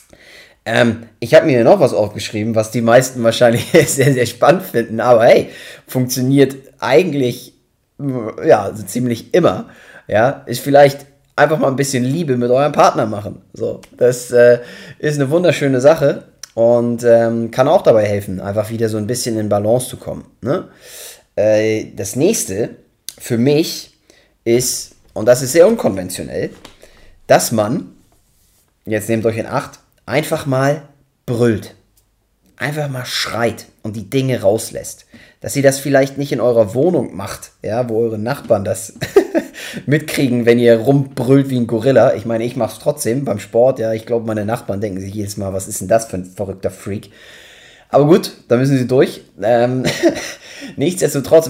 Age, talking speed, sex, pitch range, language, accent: 20-39, 165 wpm, male, 110-140 Hz, German, German